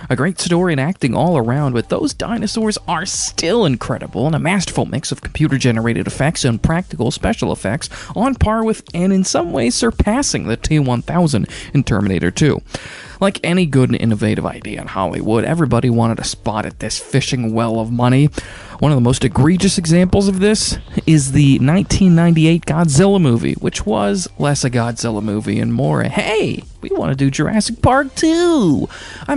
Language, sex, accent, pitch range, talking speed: English, male, American, 115-195 Hz, 175 wpm